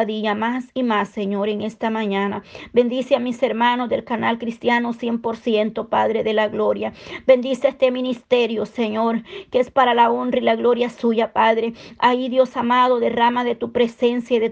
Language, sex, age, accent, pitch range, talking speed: Spanish, female, 40-59, American, 225-255 Hz, 180 wpm